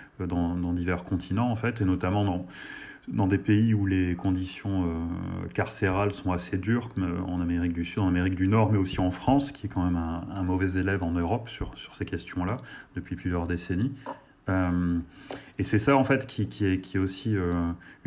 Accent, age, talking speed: French, 30-49, 210 wpm